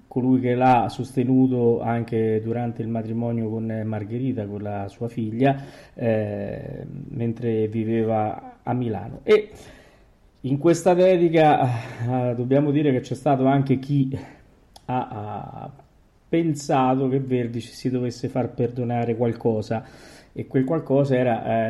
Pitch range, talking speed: 115-140 Hz, 125 wpm